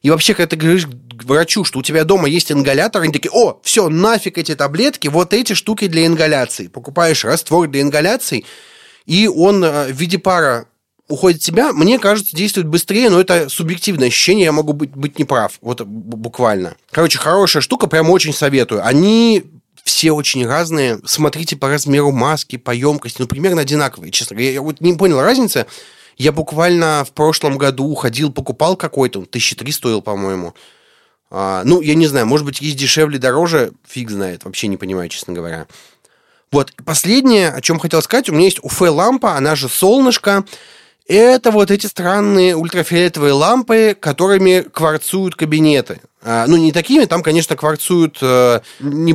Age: 30-49